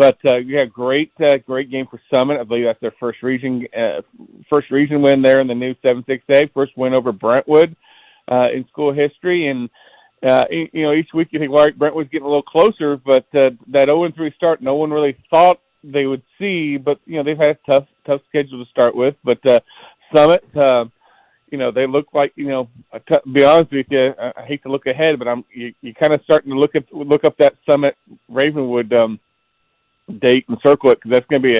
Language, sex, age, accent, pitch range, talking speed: English, male, 40-59, American, 120-145 Hz, 235 wpm